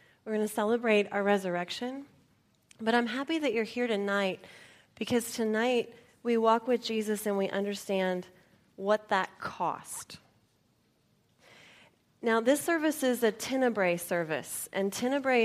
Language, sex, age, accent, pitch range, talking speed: English, female, 30-49, American, 190-225 Hz, 130 wpm